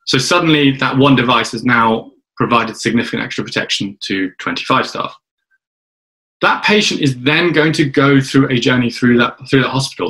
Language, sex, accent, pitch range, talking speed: English, male, British, 120-150 Hz, 170 wpm